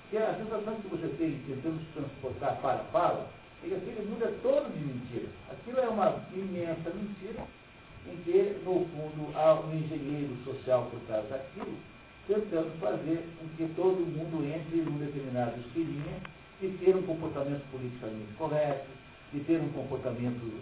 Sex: male